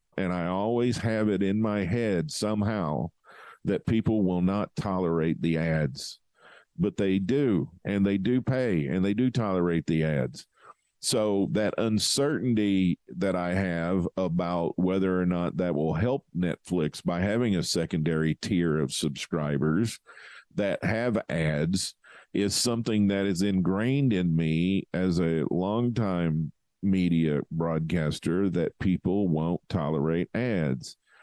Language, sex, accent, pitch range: English, male, American, 85-110 Hz